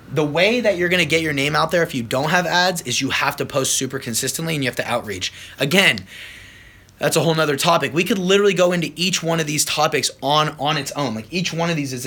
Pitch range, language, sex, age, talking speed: 140-185 Hz, English, male, 20-39, 265 wpm